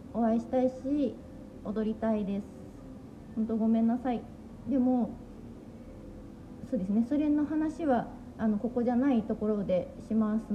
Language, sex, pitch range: Japanese, female, 220-295 Hz